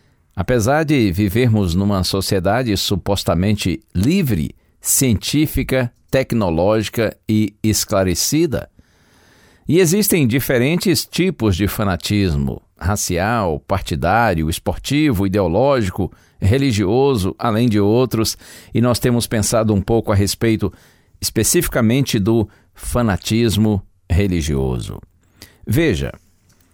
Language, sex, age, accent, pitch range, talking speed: Portuguese, male, 60-79, Brazilian, 90-125 Hz, 85 wpm